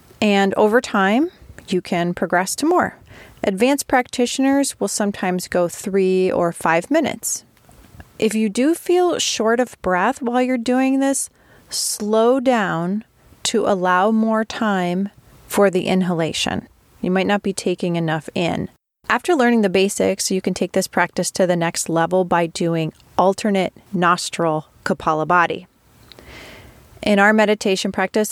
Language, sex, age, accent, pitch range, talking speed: English, female, 30-49, American, 180-230 Hz, 140 wpm